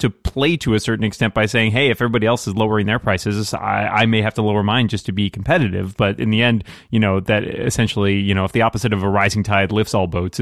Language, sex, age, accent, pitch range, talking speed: English, male, 30-49, American, 100-120 Hz, 270 wpm